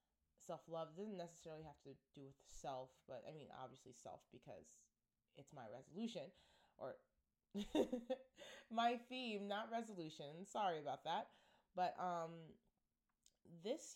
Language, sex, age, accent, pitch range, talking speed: English, female, 20-39, American, 150-180 Hz, 125 wpm